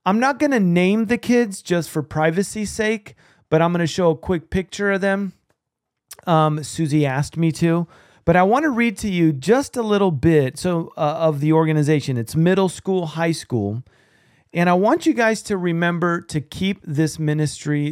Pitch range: 135-170 Hz